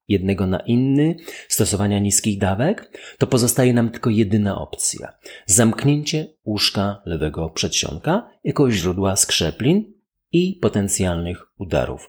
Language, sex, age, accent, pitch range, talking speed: Polish, male, 40-59, native, 100-120 Hz, 110 wpm